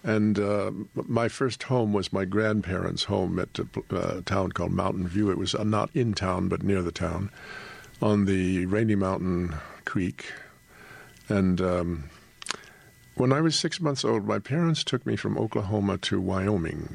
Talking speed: 165 wpm